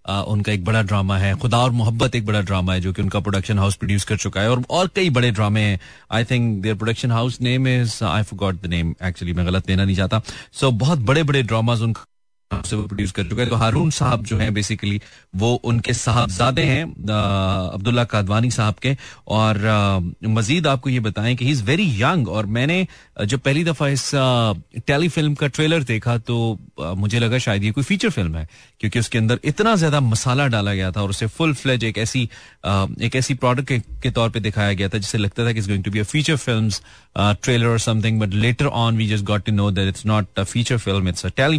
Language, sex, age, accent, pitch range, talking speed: Hindi, male, 30-49, native, 100-125 Hz, 200 wpm